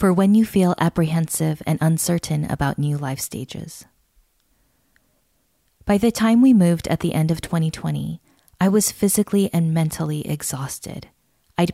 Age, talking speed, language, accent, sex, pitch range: 20-39, 145 wpm, English, American, female, 150-185 Hz